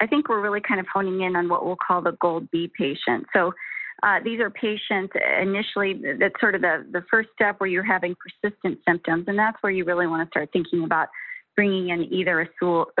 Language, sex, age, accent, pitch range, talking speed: English, female, 30-49, American, 170-210 Hz, 220 wpm